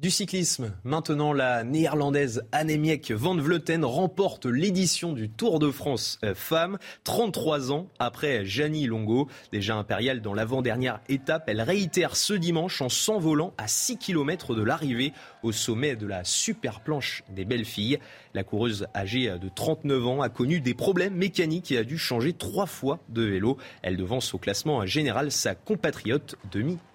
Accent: French